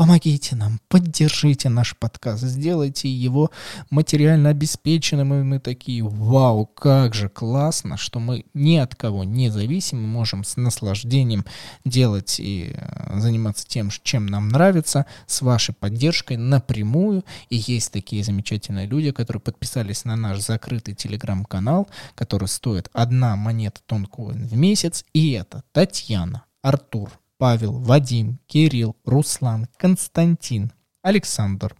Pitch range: 110-145 Hz